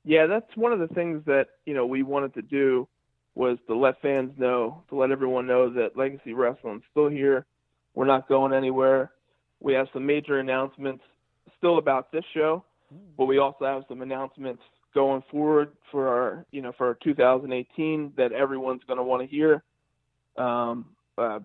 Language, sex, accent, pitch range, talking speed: English, male, American, 125-150 Hz, 180 wpm